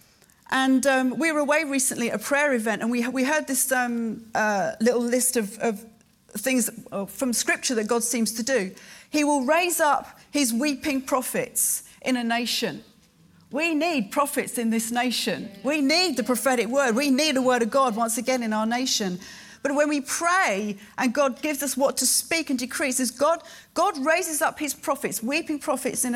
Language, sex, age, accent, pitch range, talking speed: English, female, 40-59, British, 225-285 Hz, 190 wpm